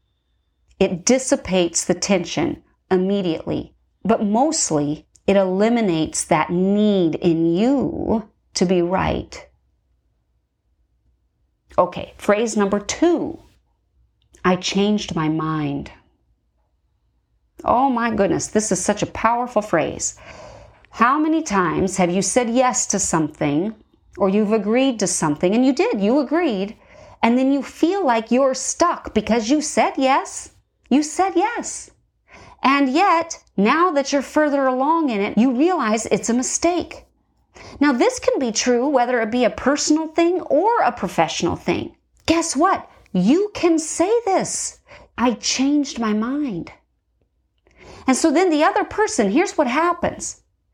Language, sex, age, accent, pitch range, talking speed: English, female, 40-59, American, 200-300 Hz, 135 wpm